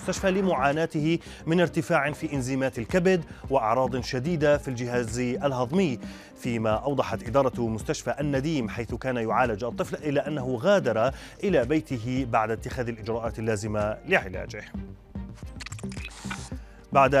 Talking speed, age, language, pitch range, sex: 110 wpm, 30-49, Arabic, 115-165 Hz, male